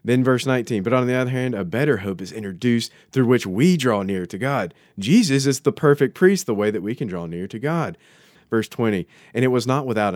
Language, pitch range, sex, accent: English, 95-120 Hz, male, American